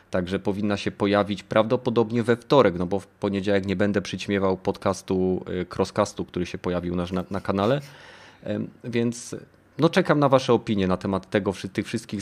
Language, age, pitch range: Polish, 30-49, 100-120 Hz